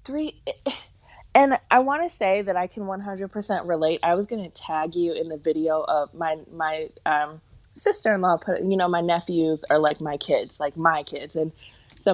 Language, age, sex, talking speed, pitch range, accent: English, 20-39, female, 195 wpm, 155-195 Hz, American